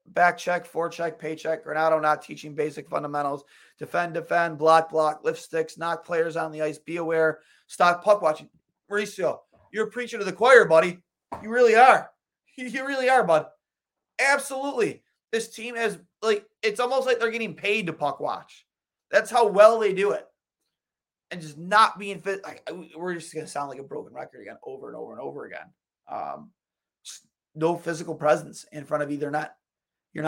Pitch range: 155-200 Hz